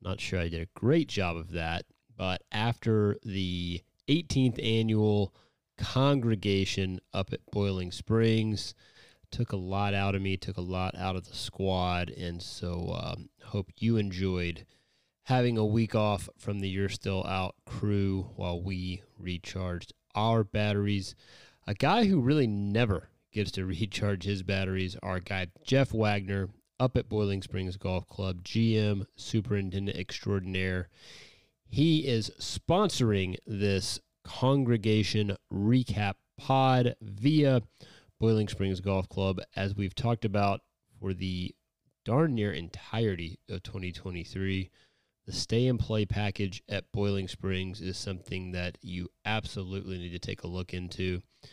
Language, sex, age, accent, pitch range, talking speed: English, male, 30-49, American, 95-110 Hz, 135 wpm